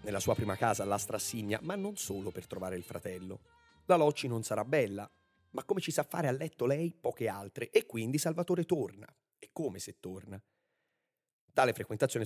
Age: 30-49